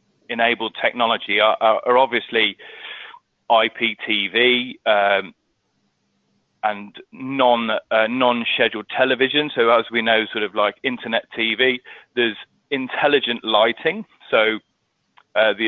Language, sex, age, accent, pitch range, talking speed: English, male, 30-49, British, 105-125 Hz, 110 wpm